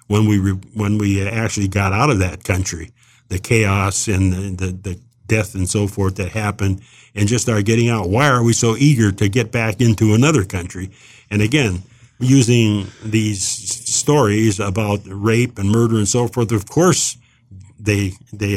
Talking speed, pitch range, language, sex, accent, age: 180 wpm, 100-120 Hz, English, male, American, 50-69